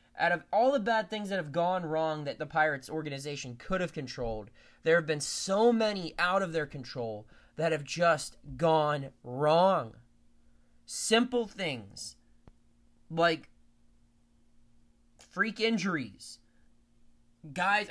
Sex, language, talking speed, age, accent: male, English, 125 wpm, 20-39, American